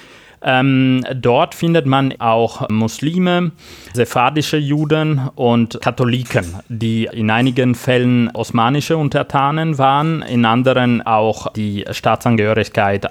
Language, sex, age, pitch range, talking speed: German, male, 30-49, 115-145 Hz, 100 wpm